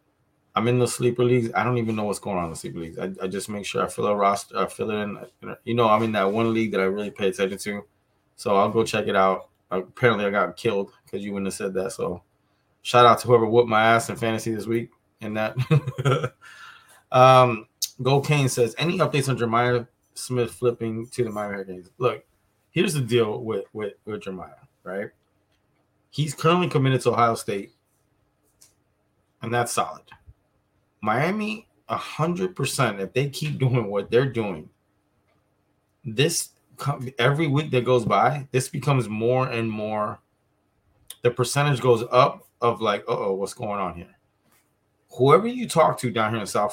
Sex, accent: male, American